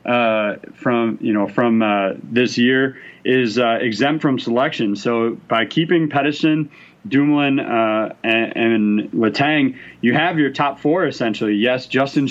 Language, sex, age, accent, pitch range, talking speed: English, male, 30-49, American, 115-140 Hz, 145 wpm